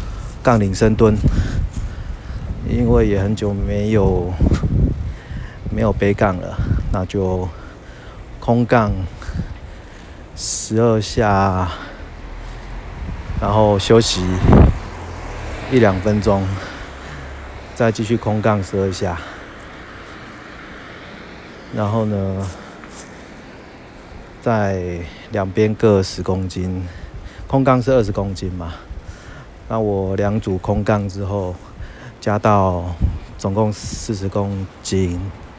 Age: 30-49